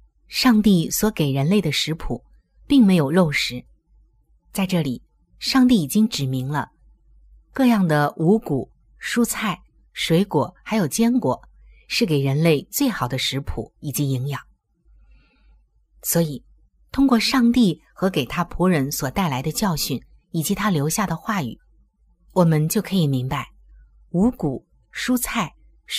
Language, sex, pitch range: Chinese, female, 135-210 Hz